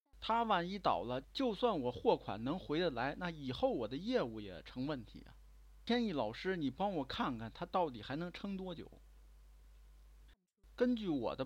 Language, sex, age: Chinese, male, 50-69